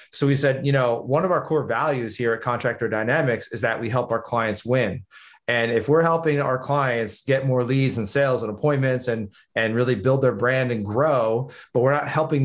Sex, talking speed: male, 220 wpm